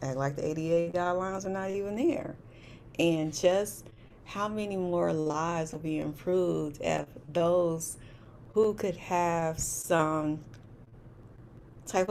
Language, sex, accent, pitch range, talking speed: English, female, American, 135-160 Hz, 125 wpm